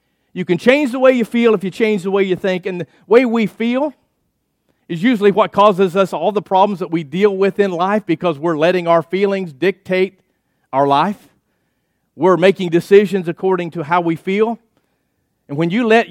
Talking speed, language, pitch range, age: 200 wpm, English, 165-215 Hz, 50-69